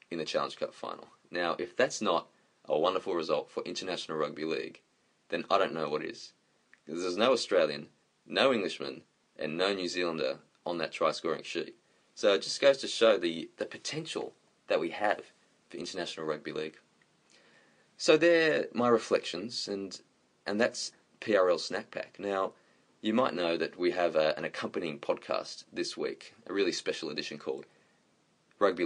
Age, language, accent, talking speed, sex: 20-39, English, Australian, 170 wpm, male